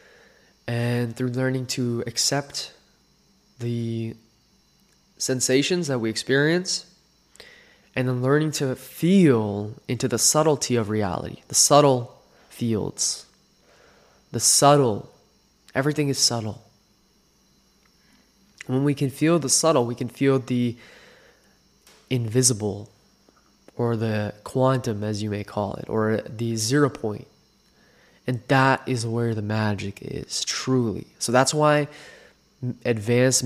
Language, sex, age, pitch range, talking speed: English, male, 20-39, 110-130 Hz, 115 wpm